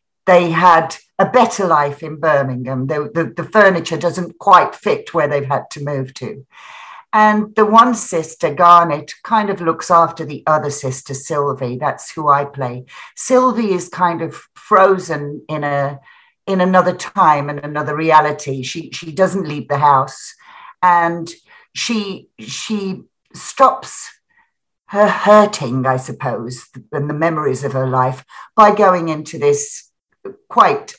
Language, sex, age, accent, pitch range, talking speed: English, female, 60-79, British, 140-185 Hz, 140 wpm